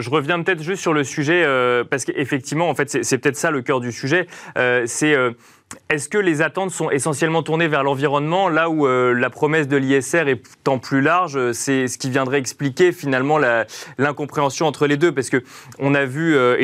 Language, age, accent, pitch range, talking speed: French, 20-39, French, 125-155 Hz, 215 wpm